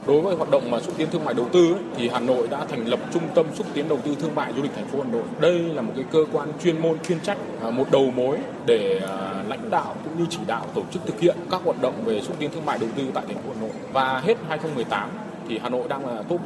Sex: male